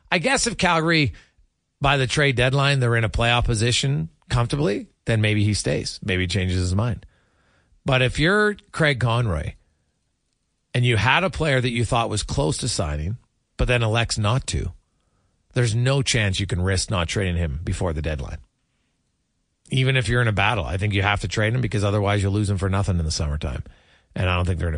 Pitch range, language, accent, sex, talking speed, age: 100-140 Hz, English, American, male, 210 wpm, 40-59